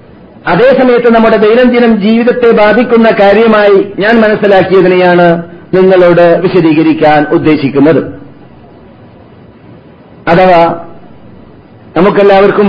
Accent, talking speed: native, 60 wpm